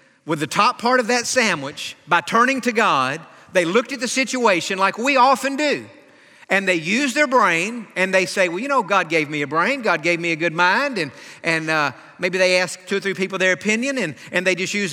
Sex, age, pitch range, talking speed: male, 50-69, 180-250 Hz, 235 wpm